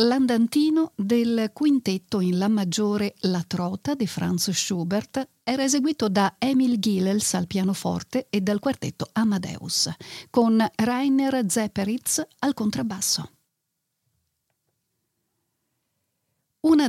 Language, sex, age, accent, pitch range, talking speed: Italian, female, 50-69, native, 185-245 Hz, 100 wpm